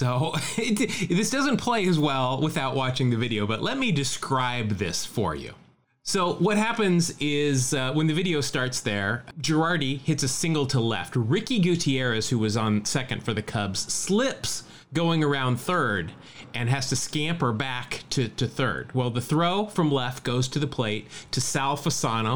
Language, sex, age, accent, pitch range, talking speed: English, male, 30-49, American, 120-155 Hz, 175 wpm